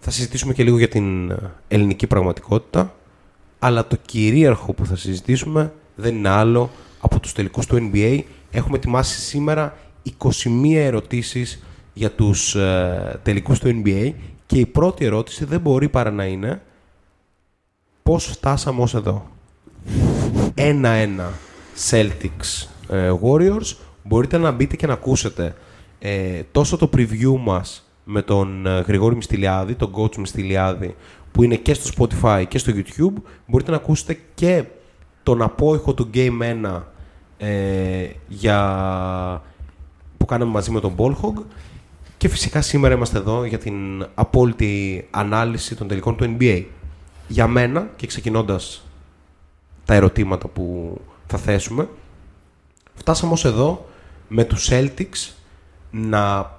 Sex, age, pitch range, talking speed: male, 20-39, 90-125 Hz, 125 wpm